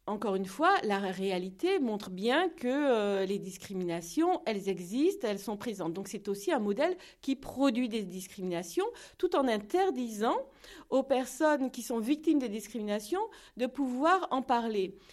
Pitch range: 205-270 Hz